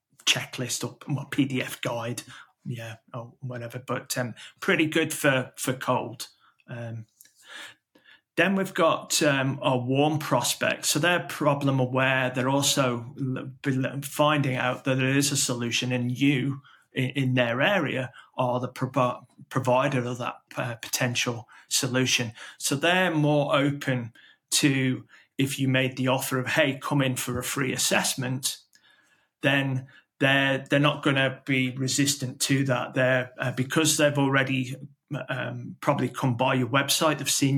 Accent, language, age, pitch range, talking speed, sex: British, English, 30-49, 125-145 Hz, 140 wpm, male